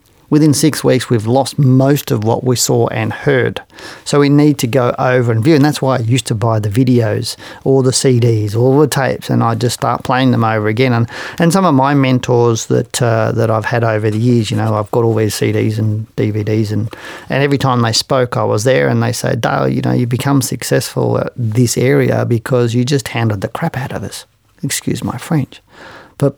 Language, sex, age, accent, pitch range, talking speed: English, male, 40-59, Australian, 115-140 Hz, 230 wpm